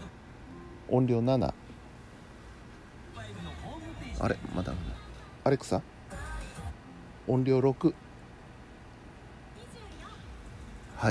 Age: 60-79